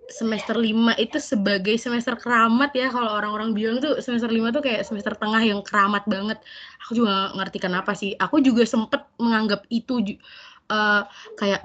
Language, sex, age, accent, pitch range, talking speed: Indonesian, female, 20-39, native, 200-240 Hz, 165 wpm